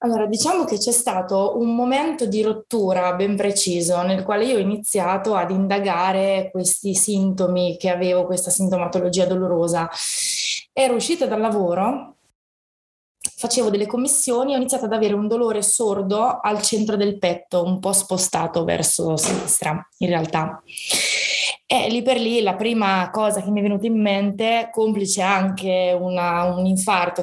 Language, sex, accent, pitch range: Italian, female, native, 185-220 Hz